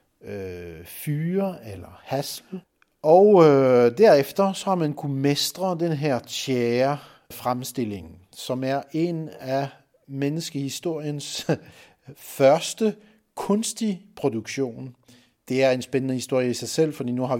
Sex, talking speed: male, 120 wpm